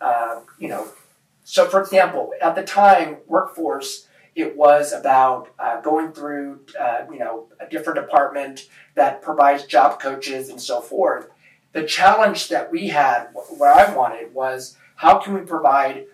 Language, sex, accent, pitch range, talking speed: English, male, American, 145-190 Hz, 155 wpm